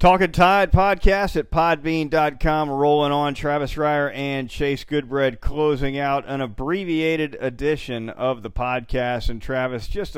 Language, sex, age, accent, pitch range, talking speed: English, male, 40-59, American, 120-145 Hz, 135 wpm